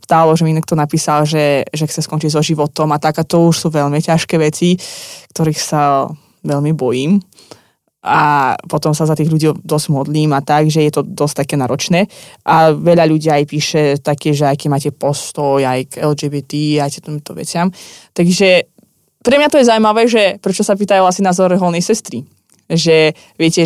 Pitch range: 150-180 Hz